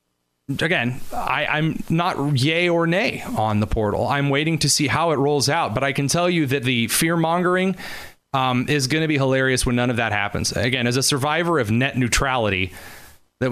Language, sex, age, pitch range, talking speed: English, male, 30-49, 115-150 Hz, 205 wpm